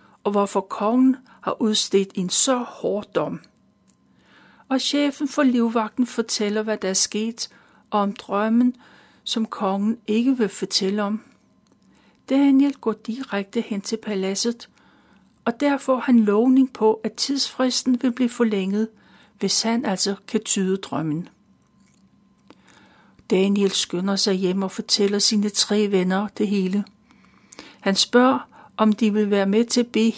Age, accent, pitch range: 60-79, native, 200-245 Hz